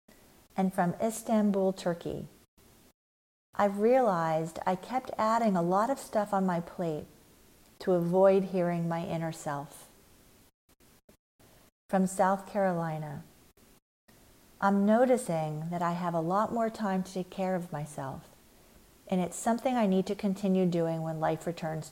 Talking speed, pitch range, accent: 135 wpm, 165-210 Hz, American